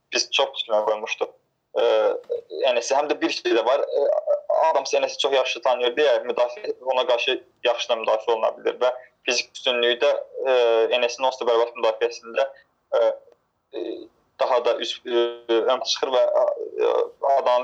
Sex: male